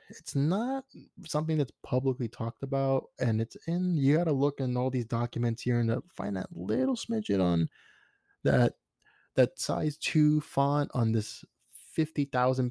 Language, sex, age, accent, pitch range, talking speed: English, male, 20-39, American, 120-150 Hz, 155 wpm